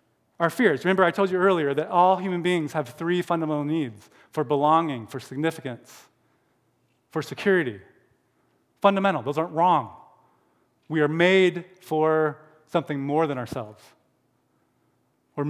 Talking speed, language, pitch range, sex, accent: 130 wpm, English, 145-190 Hz, male, American